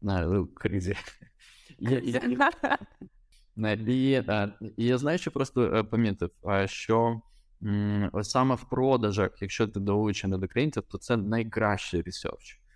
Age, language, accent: 20-39, Ukrainian, native